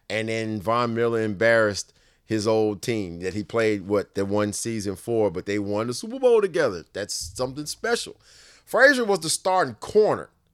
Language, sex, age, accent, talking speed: English, male, 30-49, American, 175 wpm